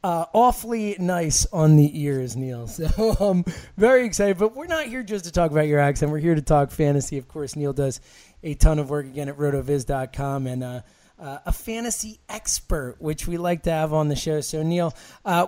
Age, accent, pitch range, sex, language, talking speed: 30-49, American, 145-180 Hz, male, English, 210 wpm